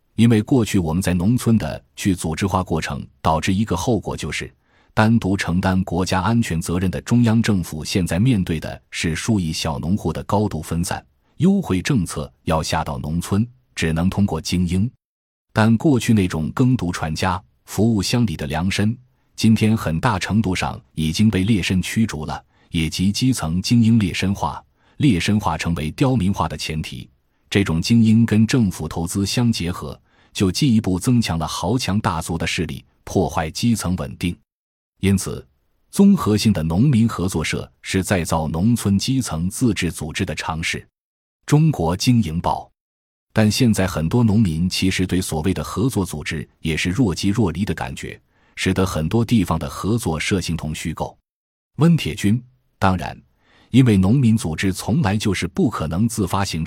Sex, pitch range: male, 80-110 Hz